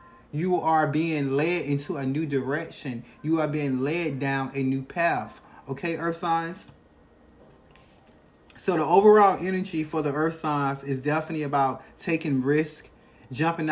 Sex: male